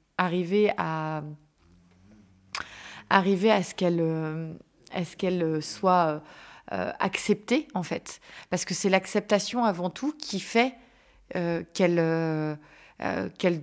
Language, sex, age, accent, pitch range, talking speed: French, female, 30-49, French, 165-195 Hz, 110 wpm